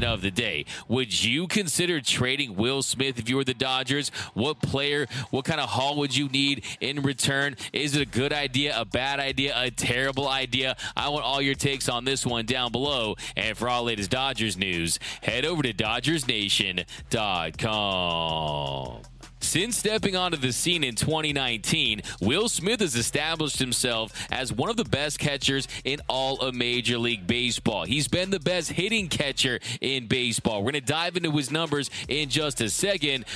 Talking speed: 180 wpm